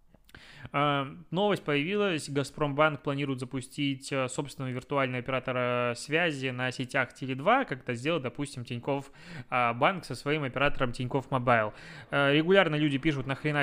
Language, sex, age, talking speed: Russian, male, 20-39, 125 wpm